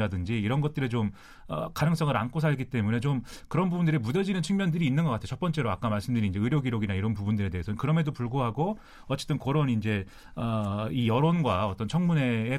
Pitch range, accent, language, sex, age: 115-165 Hz, native, Korean, male, 30-49